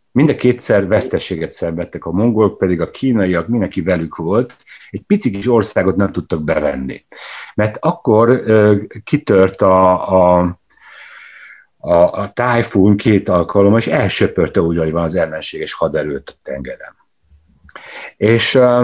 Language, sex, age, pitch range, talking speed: Hungarian, male, 60-79, 90-115 Hz, 125 wpm